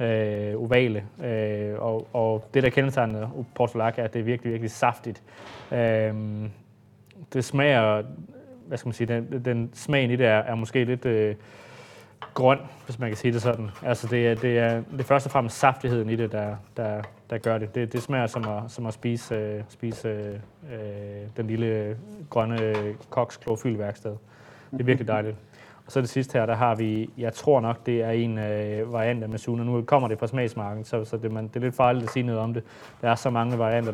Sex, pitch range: male, 110-125 Hz